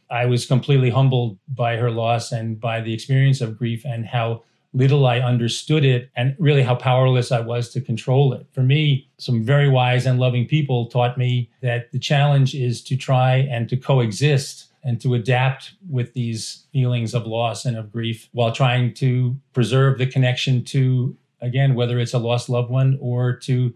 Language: English